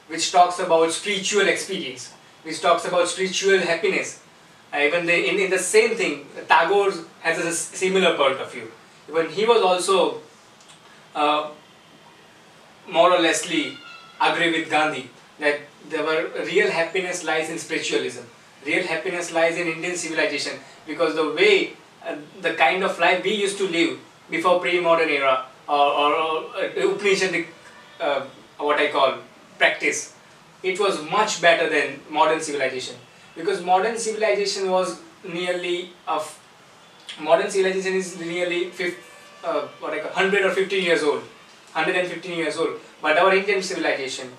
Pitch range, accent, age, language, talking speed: 155-190 Hz, native, 20-39, Hindi, 145 wpm